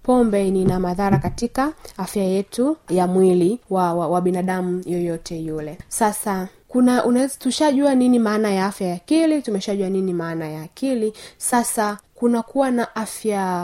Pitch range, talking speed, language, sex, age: 190-245 Hz, 150 wpm, Swahili, female, 20-39